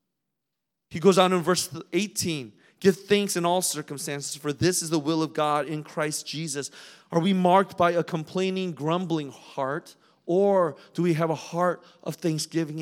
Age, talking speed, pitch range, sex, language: 30-49, 175 wpm, 160-195 Hz, male, English